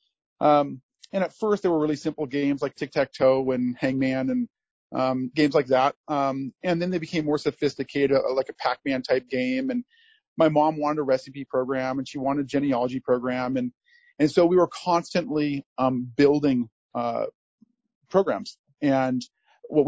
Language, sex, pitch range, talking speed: English, male, 130-160 Hz, 170 wpm